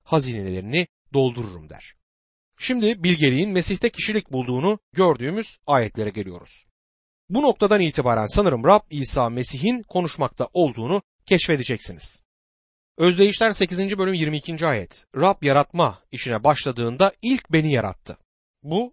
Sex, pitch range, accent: male, 115-185 Hz, native